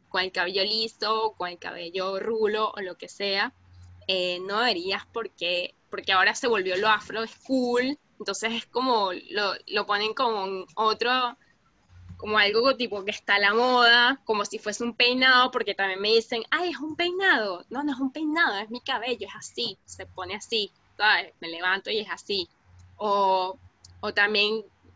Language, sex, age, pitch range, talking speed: Spanish, female, 10-29, 195-250 Hz, 185 wpm